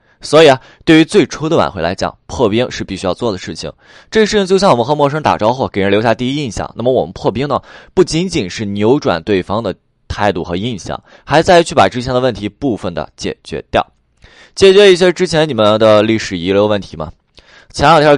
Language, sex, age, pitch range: Chinese, male, 20-39, 95-140 Hz